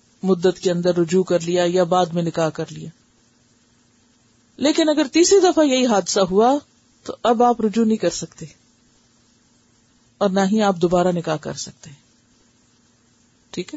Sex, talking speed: female, 155 wpm